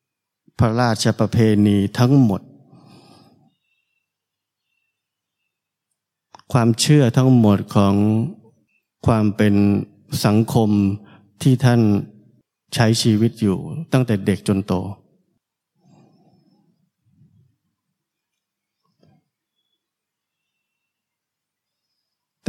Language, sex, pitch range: Thai, male, 105-135 Hz